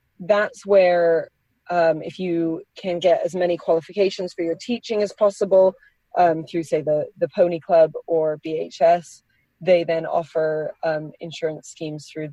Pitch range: 160-190 Hz